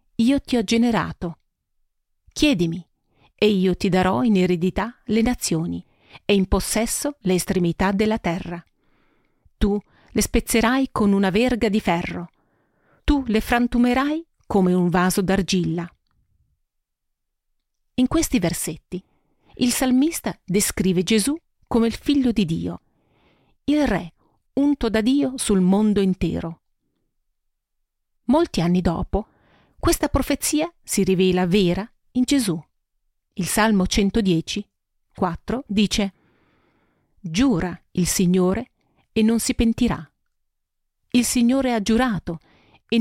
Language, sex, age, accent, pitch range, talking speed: Italian, female, 40-59, native, 185-245 Hz, 115 wpm